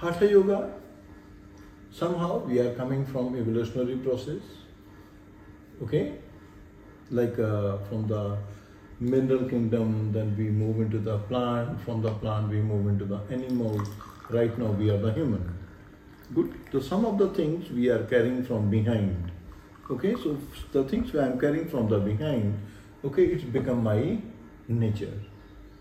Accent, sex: Indian, male